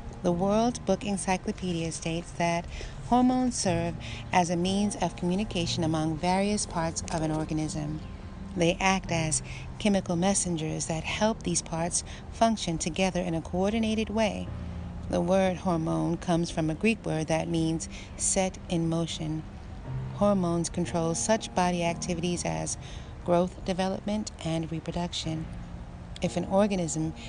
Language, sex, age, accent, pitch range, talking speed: English, female, 40-59, American, 160-190 Hz, 130 wpm